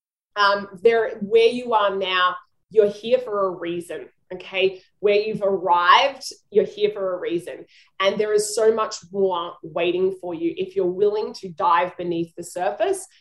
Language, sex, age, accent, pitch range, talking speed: English, female, 20-39, Australian, 185-265 Hz, 170 wpm